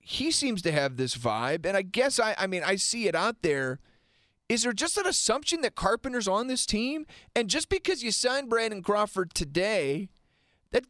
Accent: American